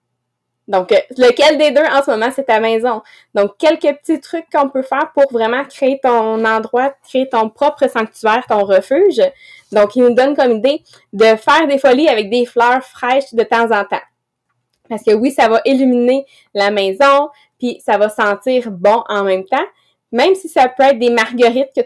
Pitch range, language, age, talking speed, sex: 225-275 Hz, English, 20-39, 190 wpm, female